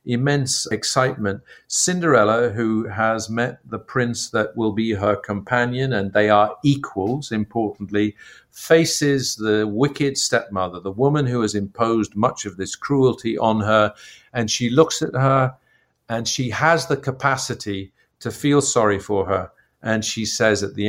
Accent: British